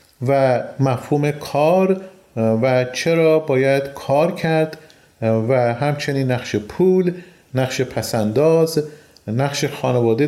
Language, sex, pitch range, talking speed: Persian, male, 130-165 Hz, 95 wpm